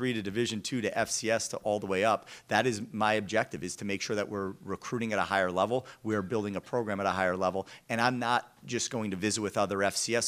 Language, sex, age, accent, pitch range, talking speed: English, male, 40-59, American, 95-120 Hz, 255 wpm